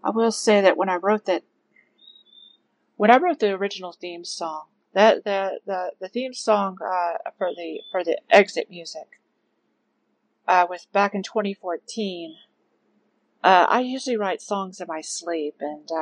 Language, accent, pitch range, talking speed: English, American, 160-190 Hz, 155 wpm